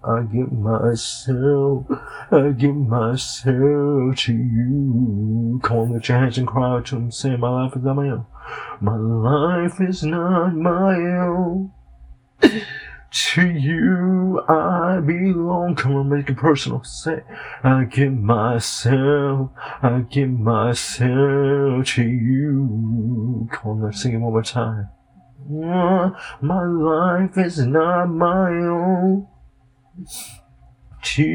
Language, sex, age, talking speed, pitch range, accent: English, male, 30-49, 120 wpm, 125-185 Hz, American